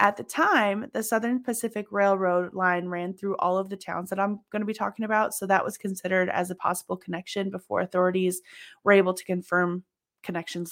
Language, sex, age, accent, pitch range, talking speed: English, female, 20-39, American, 190-240 Hz, 200 wpm